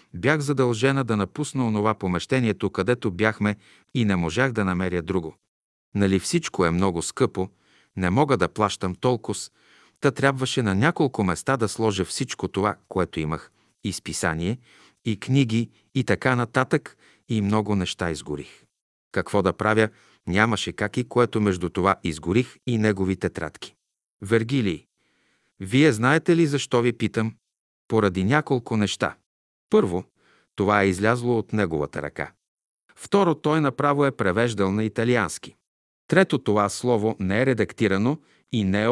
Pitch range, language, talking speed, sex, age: 95-125 Hz, Bulgarian, 140 wpm, male, 50-69